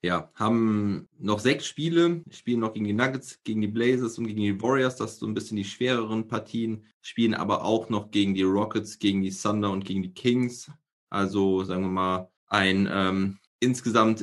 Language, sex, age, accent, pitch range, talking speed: German, male, 20-39, German, 100-115 Hz, 195 wpm